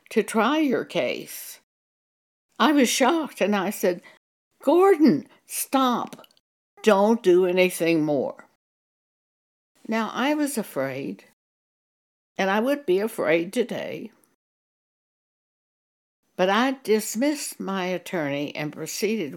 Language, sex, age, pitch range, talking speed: English, female, 60-79, 160-215 Hz, 100 wpm